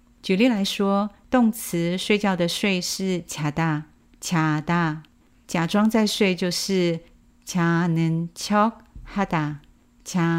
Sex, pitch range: female, 160-210 Hz